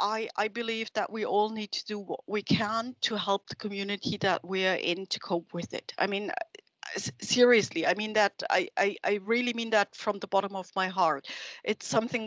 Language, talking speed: English, 215 wpm